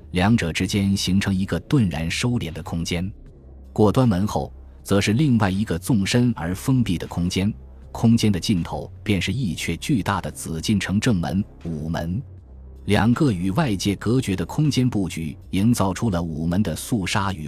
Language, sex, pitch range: Chinese, male, 85-110 Hz